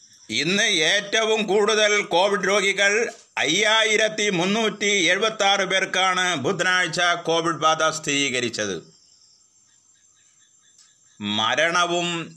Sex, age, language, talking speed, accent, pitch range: male, 30-49, Malayalam, 75 wpm, native, 145-195 Hz